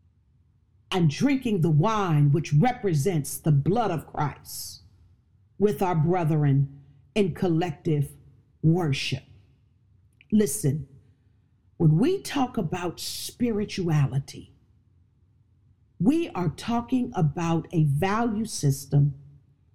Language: English